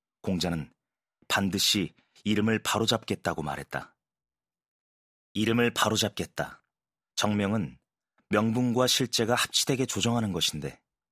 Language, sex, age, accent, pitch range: Korean, male, 30-49, native, 95-115 Hz